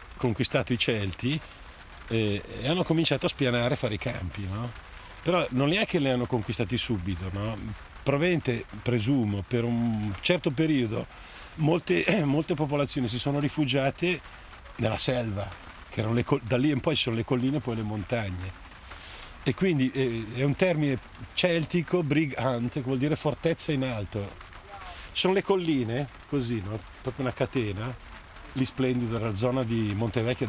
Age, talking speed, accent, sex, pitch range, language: 50-69, 155 wpm, native, male, 100-140 Hz, Italian